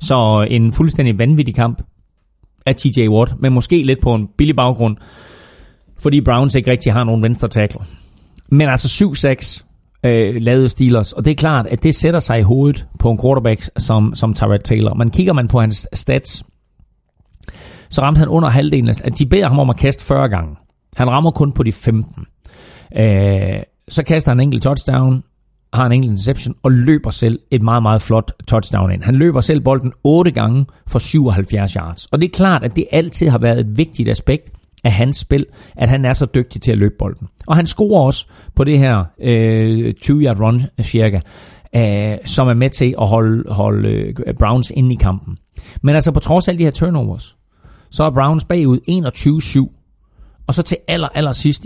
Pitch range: 110-140 Hz